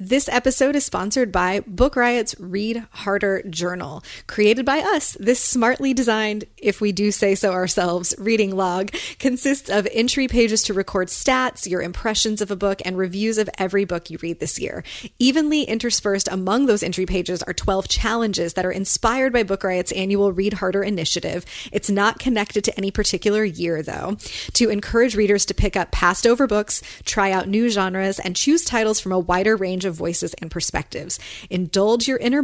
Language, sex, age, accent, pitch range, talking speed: English, female, 30-49, American, 185-225 Hz, 185 wpm